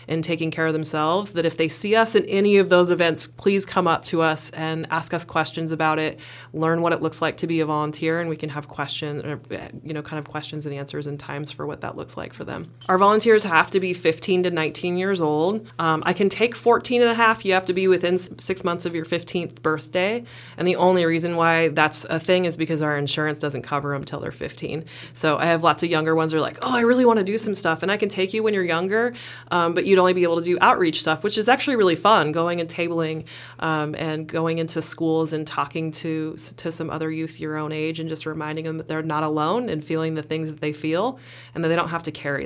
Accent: American